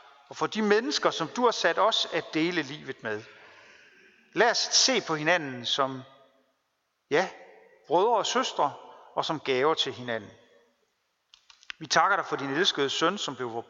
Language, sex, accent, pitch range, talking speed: Danish, male, native, 135-185 Hz, 165 wpm